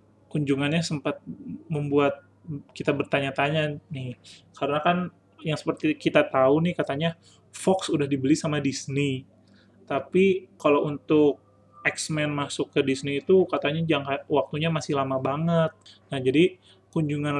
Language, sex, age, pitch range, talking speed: Indonesian, male, 30-49, 135-155 Hz, 125 wpm